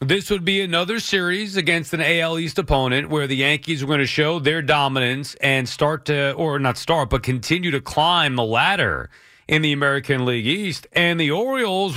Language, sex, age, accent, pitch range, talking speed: English, male, 30-49, American, 155-220 Hz, 195 wpm